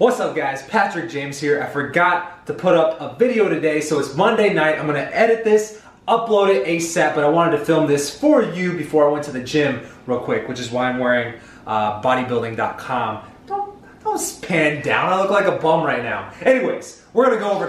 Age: 20-39